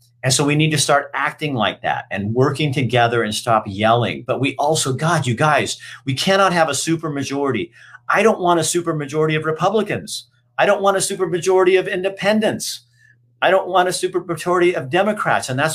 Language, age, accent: English, 50-69, American